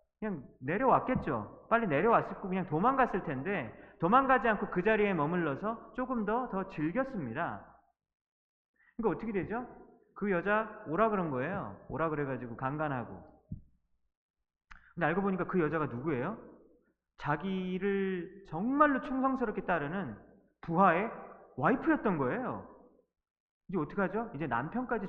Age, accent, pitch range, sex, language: 30-49, native, 150-220 Hz, male, Korean